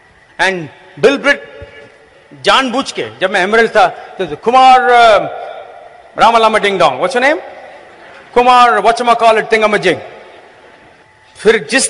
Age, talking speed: 40-59, 100 wpm